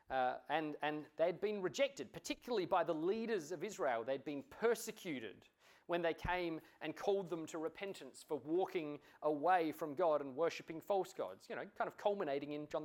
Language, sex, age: English, male, 30-49